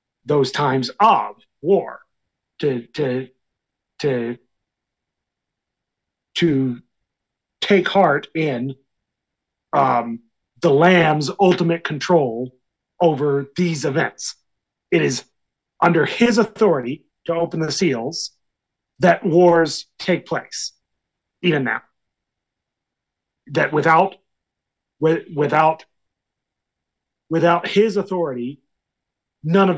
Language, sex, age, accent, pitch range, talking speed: English, male, 40-59, American, 140-185 Hz, 85 wpm